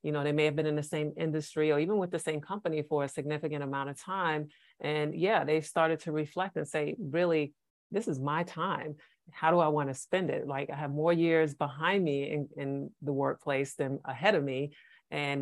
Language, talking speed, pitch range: English, 225 wpm, 145-170 Hz